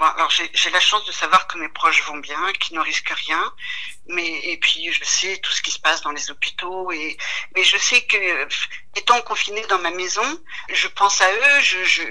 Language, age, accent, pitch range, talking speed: French, 50-69, French, 185-220 Hz, 230 wpm